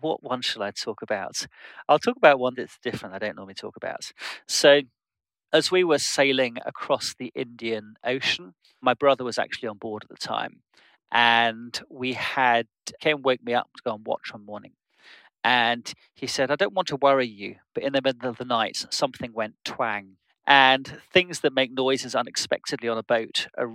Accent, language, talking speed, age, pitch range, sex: British, English, 195 wpm, 40-59, 115-135 Hz, male